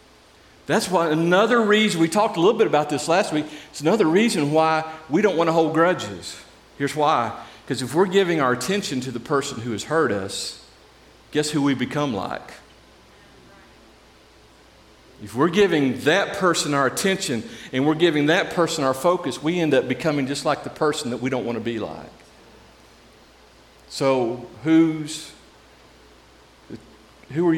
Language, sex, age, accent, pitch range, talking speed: English, male, 50-69, American, 145-190 Hz, 165 wpm